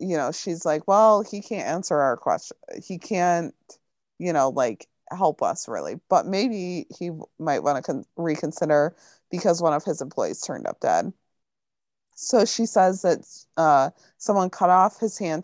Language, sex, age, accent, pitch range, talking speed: English, female, 30-49, American, 155-195 Hz, 175 wpm